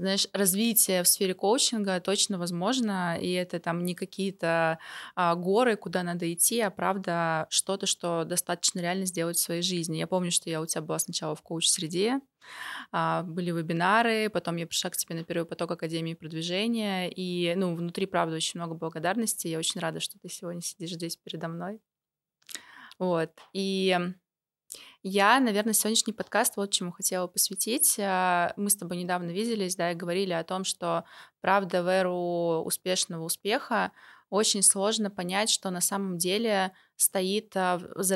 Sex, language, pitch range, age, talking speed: female, Russian, 170-200 Hz, 20-39, 160 wpm